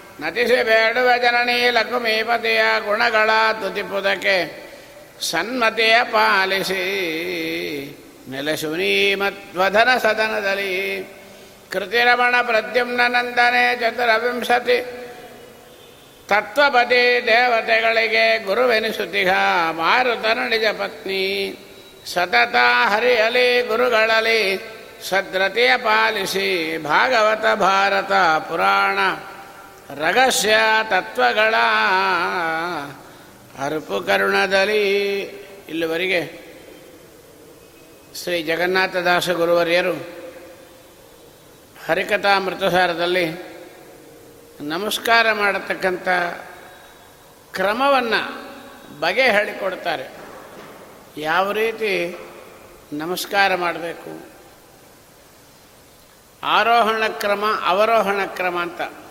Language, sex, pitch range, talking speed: Kannada, male, 180-225 Hz, 50 wpm